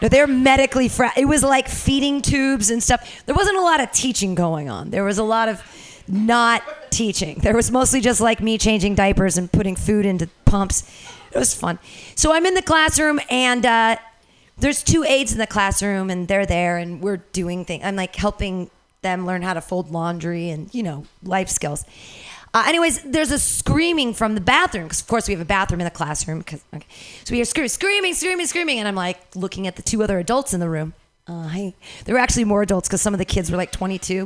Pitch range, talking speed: 185-270 Hz, 230 wpm